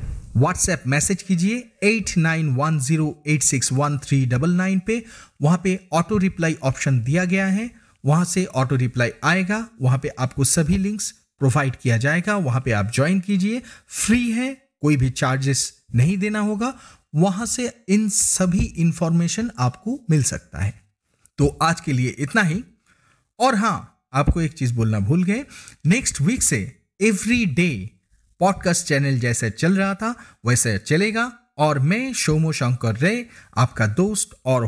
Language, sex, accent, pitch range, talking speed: Hindi, male, native, 135-205 Hz, 145 wpm